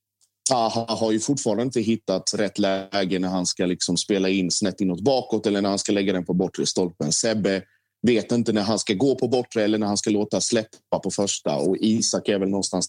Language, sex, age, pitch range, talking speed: Swedish, male, 30-49, 95-115 Hz, 220 wpm